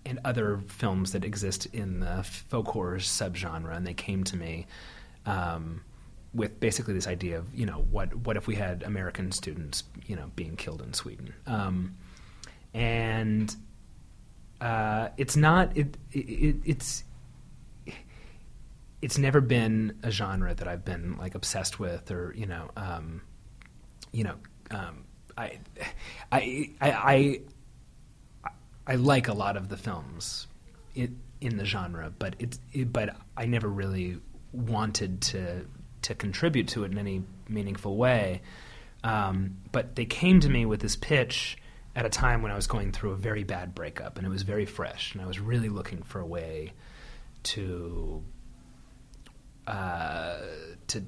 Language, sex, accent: English, male, American